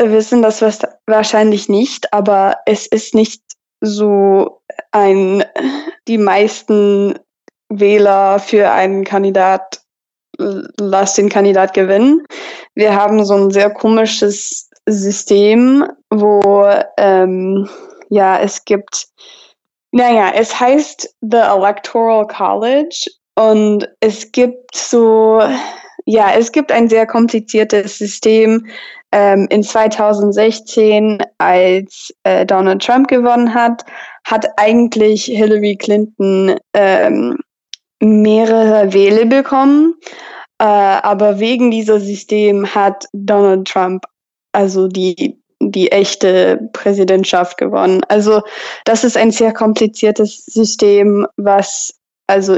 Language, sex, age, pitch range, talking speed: German, female, 20-39, 200-225 Hz, 95 wpm